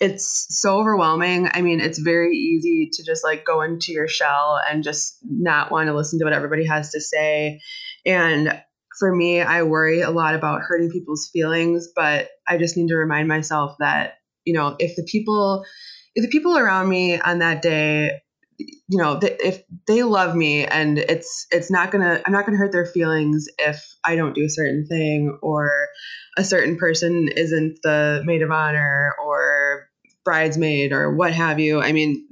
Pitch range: 150-180 Hz